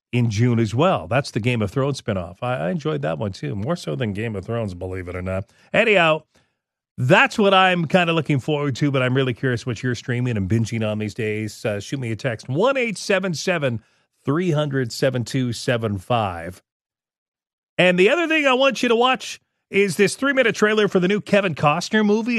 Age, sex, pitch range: 40-59, male, 125-190 Hz